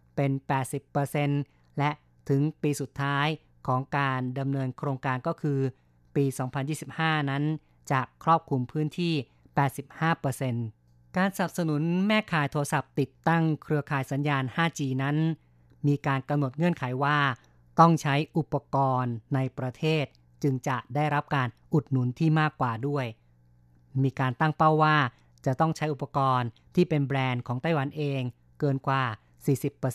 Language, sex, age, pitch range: Thai, female, 30-49, 130-150 Hz